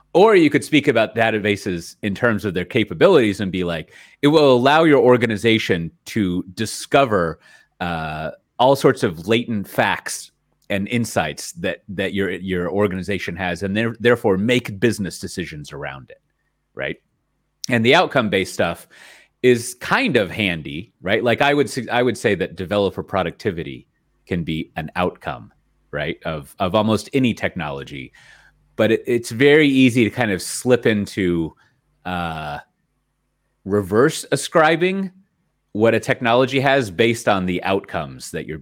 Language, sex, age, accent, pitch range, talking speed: English, male, 30-49, American, 90-120 Hz, 145 wpm